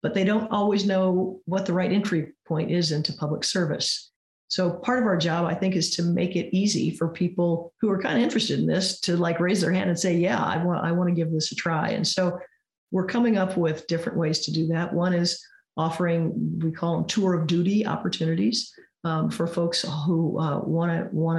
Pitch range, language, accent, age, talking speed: 165-190 Hz, English, American, 40-59, 225 wpm